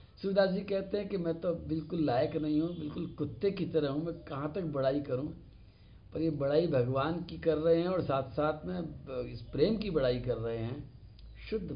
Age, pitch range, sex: 60-79, 110-165 Hz, male